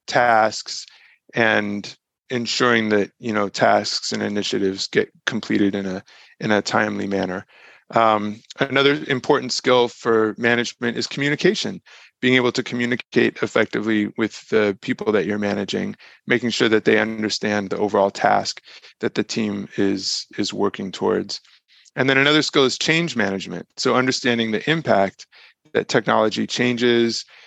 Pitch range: 105-130 Hz